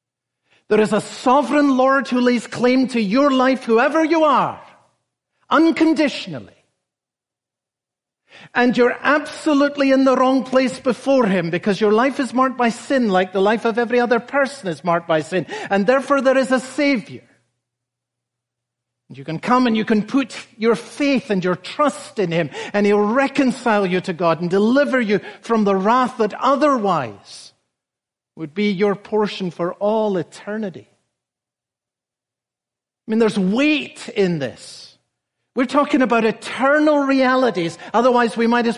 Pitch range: 180-255 Hz